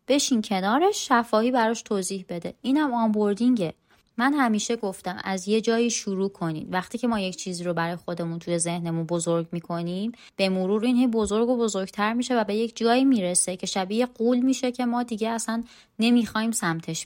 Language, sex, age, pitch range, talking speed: Persian, female, 20-39, 180-245 Hz, 175 wpm